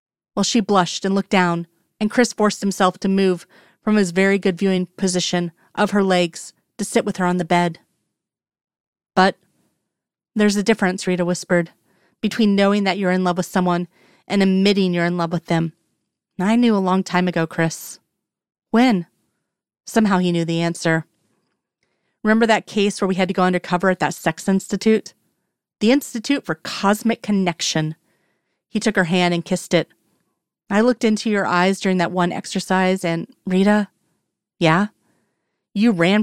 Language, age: English, 30-49